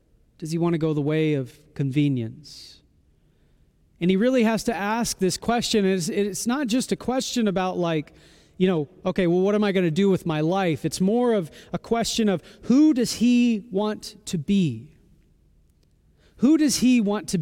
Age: 30-49